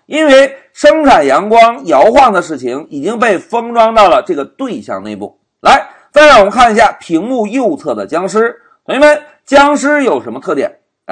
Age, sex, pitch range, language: 50-69, male, 225-300 Hz, Chinese